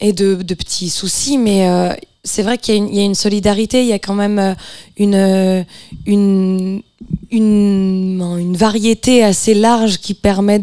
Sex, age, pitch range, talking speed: female, 20-39, 170-200 Hz, 180 wpm